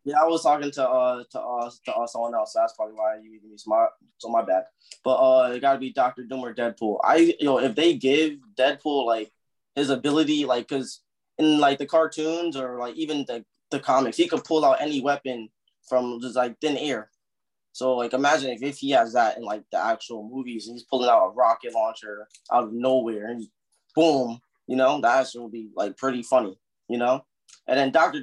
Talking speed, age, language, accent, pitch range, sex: 215 wpm, 20-39, English, American, 120-145 Hz, male